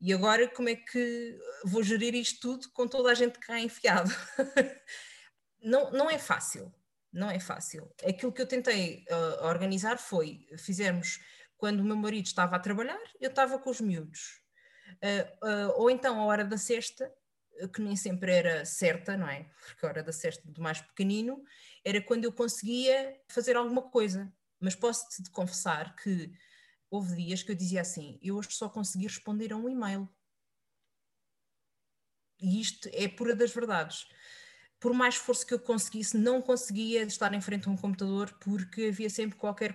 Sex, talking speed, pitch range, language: female, 175 wpm, 180-235 Hz, Portuguese